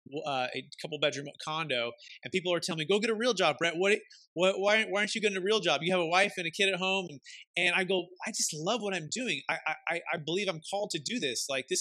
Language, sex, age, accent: English, male, 30-49, American